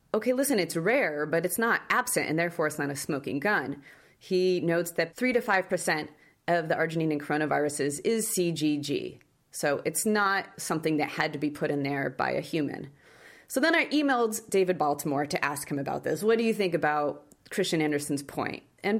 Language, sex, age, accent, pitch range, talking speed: English, female, 30-49, American, 155-210 Hz, 195 wpm